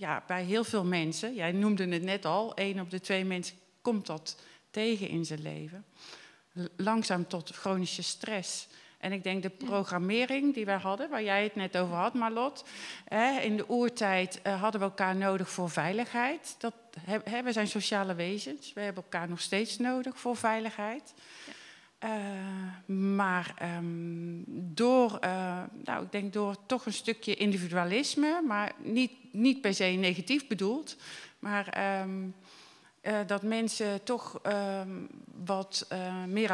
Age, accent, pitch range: 40-59, Dutch, 180-220 Hz